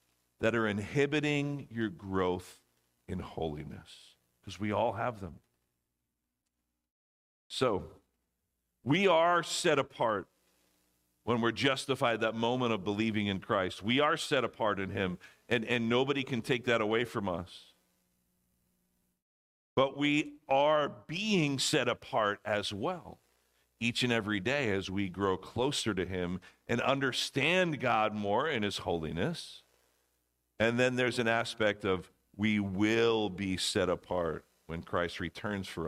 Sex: male